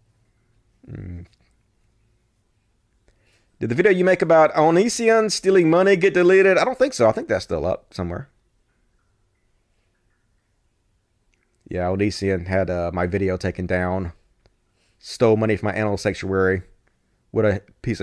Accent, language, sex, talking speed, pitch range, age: American, English, male, 130 wpm, 95-120 Hz, 30-49